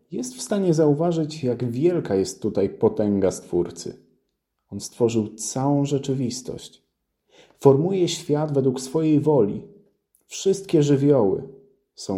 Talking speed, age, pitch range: 110 wpm, 40-59, 110-145 Hz